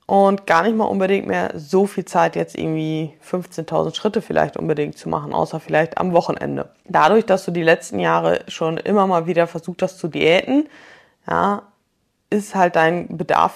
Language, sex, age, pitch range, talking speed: German, female, 20-39, 165-195 Hz, 175 wpm